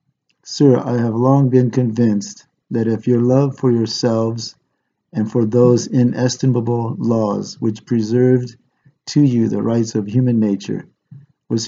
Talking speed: 140 wpm